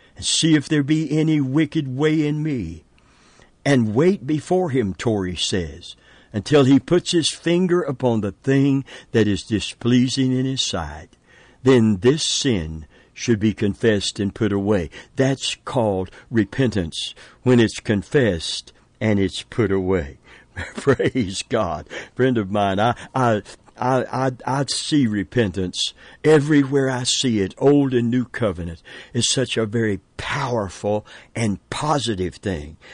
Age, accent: 60-79, American